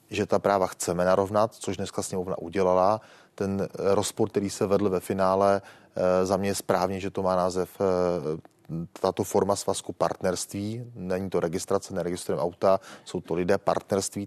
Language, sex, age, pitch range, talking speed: Czech, male, 30-49, 90-100 Hz, 155 wpm